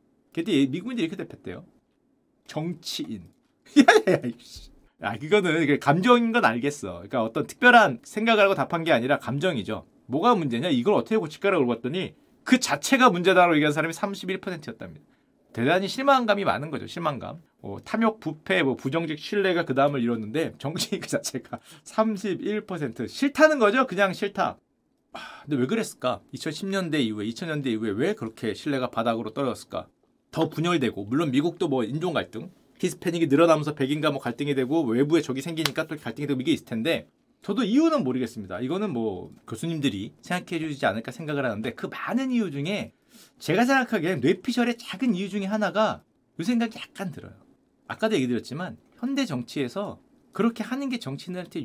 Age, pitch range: 30-49, 140-220 Hz